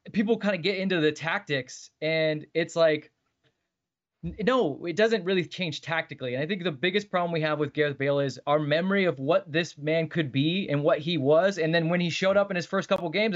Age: 20-39